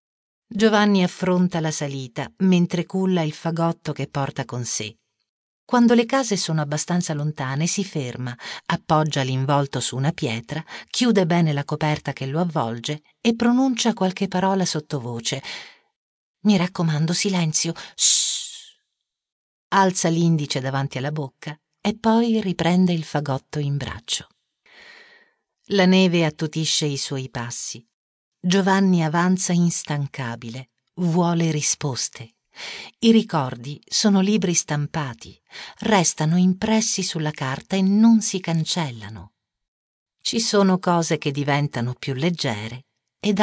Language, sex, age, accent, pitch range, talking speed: Italian, female, 40-59, native, 135-190 Hz, 115 wpm